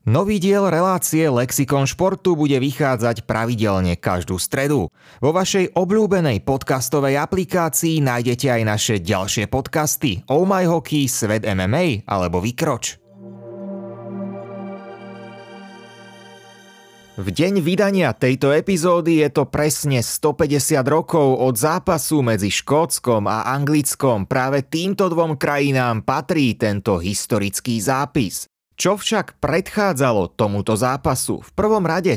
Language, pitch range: Slovak, 120-170 Hz